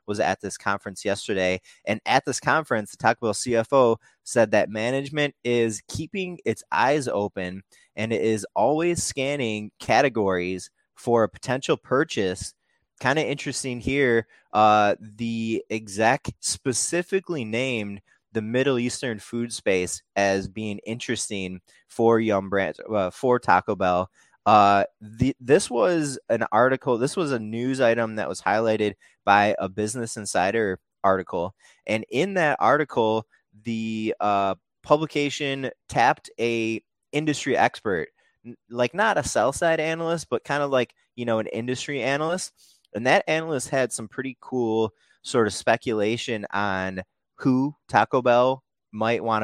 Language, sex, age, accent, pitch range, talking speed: English, male, 20-39, American, 105-135 Hz, 140 wpm